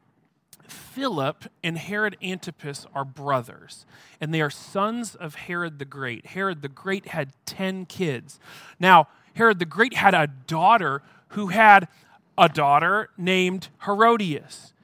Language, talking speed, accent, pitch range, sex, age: English, 135 wpm, American, 160-220 Hz, male, 40-59